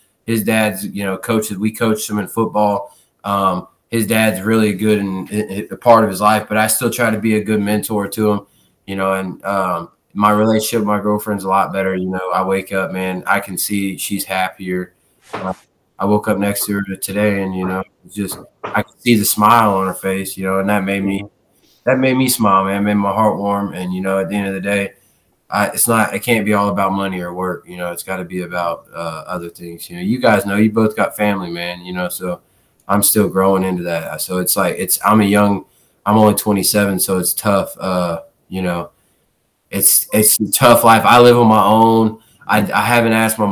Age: 20-39